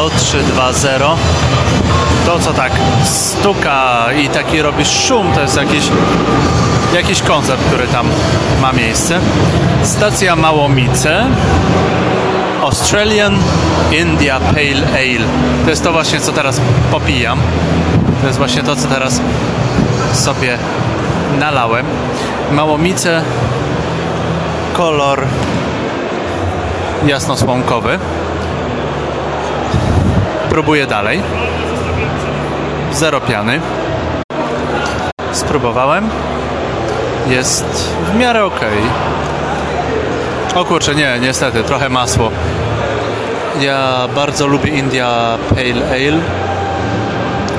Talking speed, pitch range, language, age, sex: 80 wpm, 105-145 Hz, Polish, 30-49, male